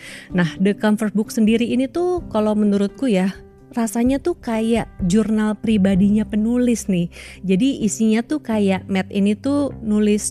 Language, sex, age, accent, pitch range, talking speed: Indonesian, female, 30-49, native, 185-220 Hz, 145 wpm